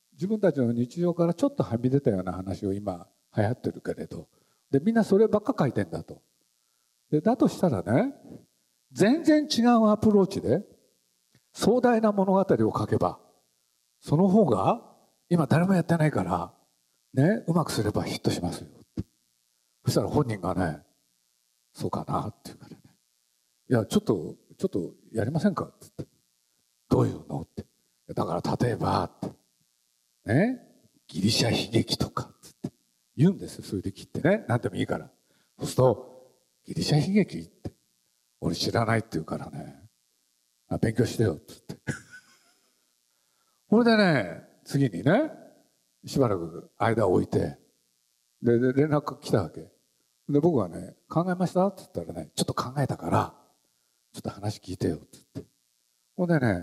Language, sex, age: Japanese, male, 60-79